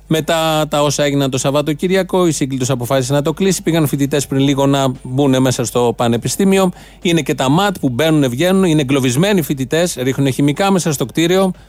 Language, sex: Greek, male